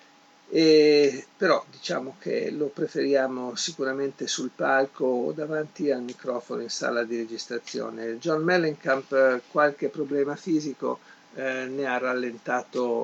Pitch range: 125-155 Hz